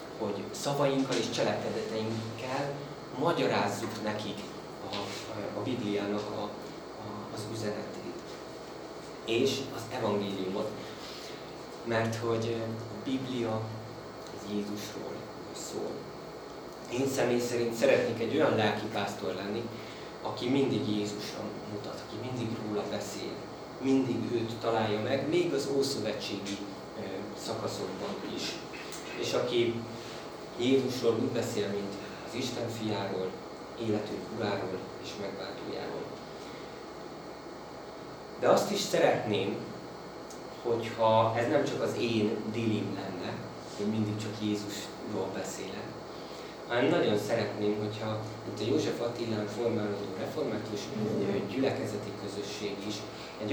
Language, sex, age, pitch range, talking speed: Hungarian, male, 30-49, 105-120 Hz, 105 wpm